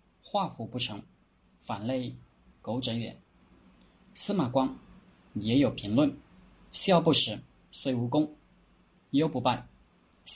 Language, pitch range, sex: Chinese, 115-150 Hz, male